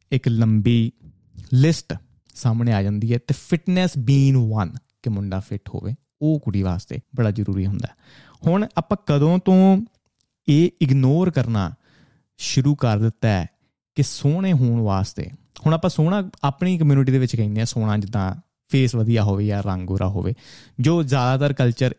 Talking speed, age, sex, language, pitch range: 155 wpm, 30-49, male, Punjabi, 115-145 Hz